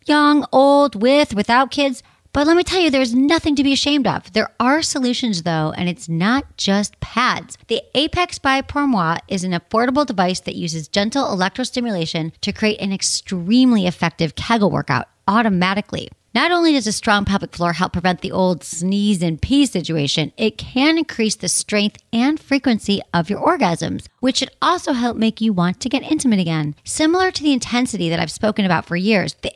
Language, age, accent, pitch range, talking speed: English, 40-59, American, 175-260 Hz, 190 wpm